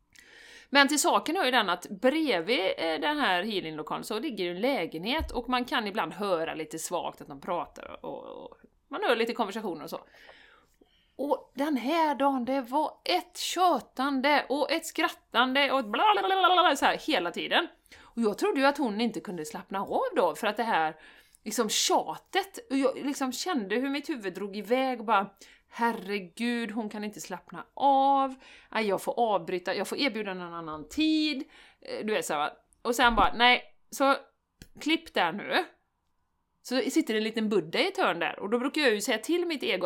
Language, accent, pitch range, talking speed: Swedish, native, 215-305 Hz, 185 wpm